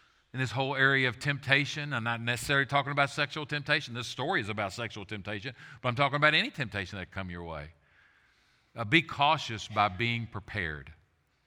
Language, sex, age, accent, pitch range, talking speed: English, male, 50-69, American, 115-155 Hz, 190 wpm